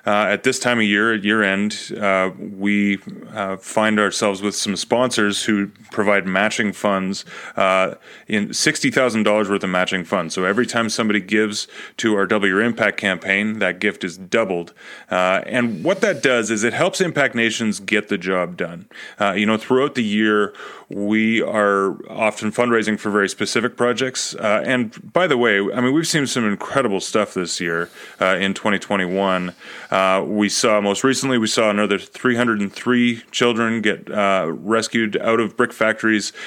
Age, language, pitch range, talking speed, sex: 30-49, English, 100-115 Hz, 175 wpm, male